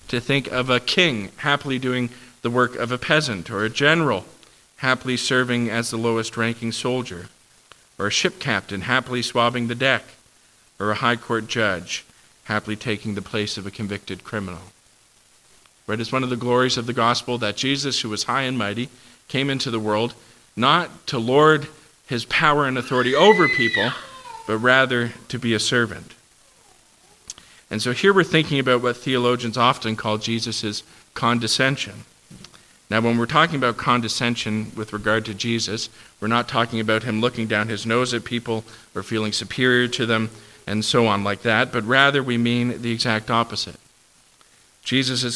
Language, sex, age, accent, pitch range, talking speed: English, male, 40-59, American, 110-130 Hz, 170 wpm